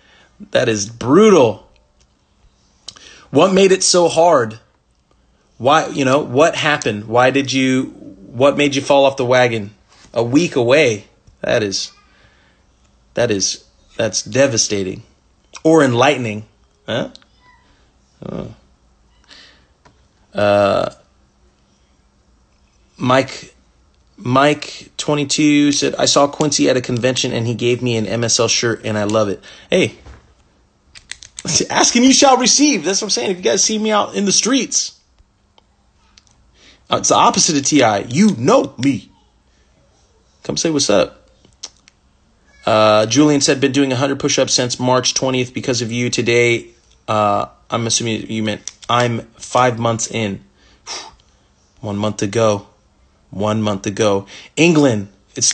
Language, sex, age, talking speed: English, male, 30-49, 130 wpm